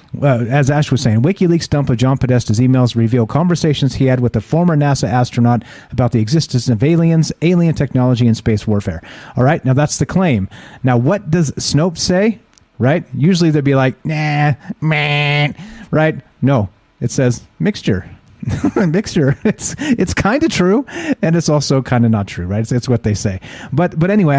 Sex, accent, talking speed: male, American, 185 wpm